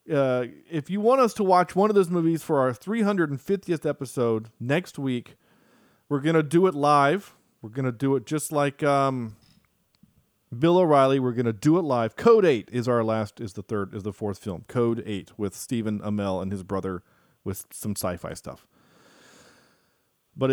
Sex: male